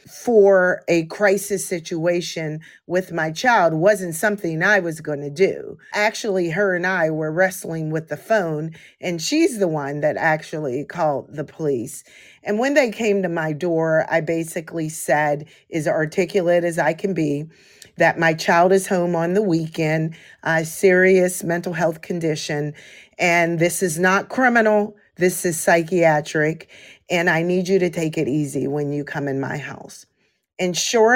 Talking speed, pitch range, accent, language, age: 160 wpm, 160-195 Hz, American, English, 40-59